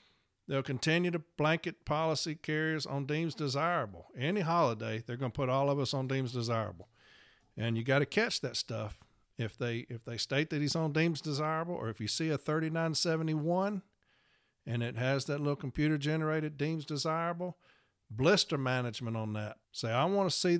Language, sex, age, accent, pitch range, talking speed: English, male, 50-69, American, 120-155 Hz, 175 wpm